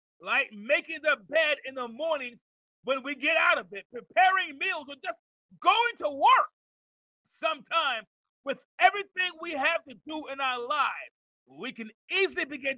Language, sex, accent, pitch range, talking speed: English, male, American, 230-335 Hz, 160 wpm